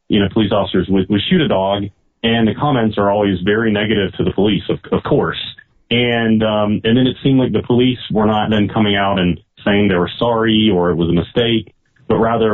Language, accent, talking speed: English, American, 225 wpm